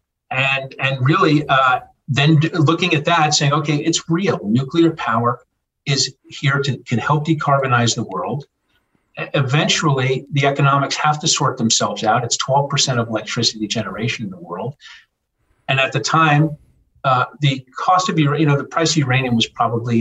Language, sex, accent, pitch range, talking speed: English, male, American, 130-150 Hz, 170 wpm